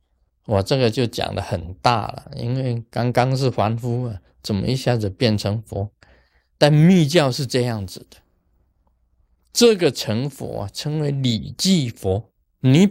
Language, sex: Chinese, male